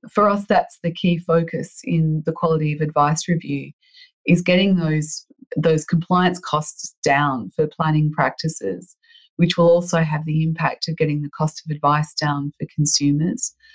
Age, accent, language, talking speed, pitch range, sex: 30-49, Australian, English, 160 wpm, 155-180 Hz, female